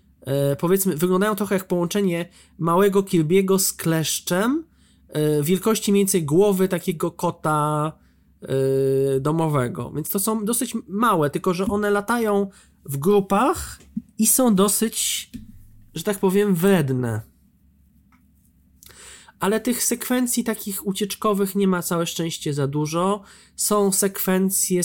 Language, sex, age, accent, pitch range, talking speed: Polish, male, 20-39, native, 145-195 Hz, 115 wpm